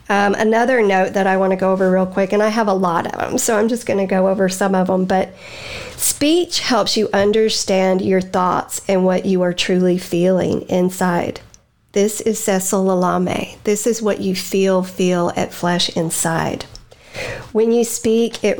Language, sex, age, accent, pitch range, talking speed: English, female, 50-69, American, 185-225 Hz, 190 wpm